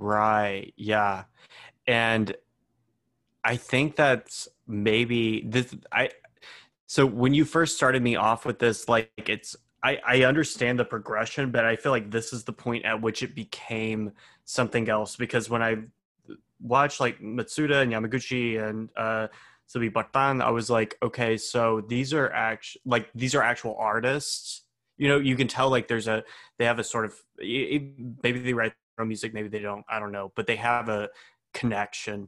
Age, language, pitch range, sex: 20-39, English, 110-120 Hz, male